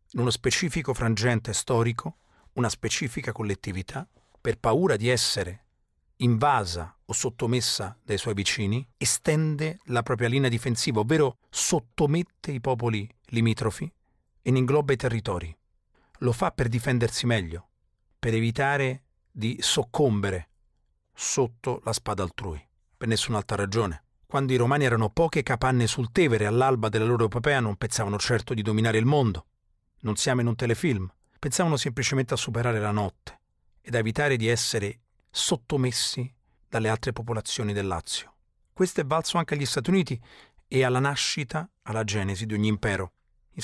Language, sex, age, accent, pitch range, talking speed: Italian, male, 40-59, native, 110-140 Hz, 145 wpm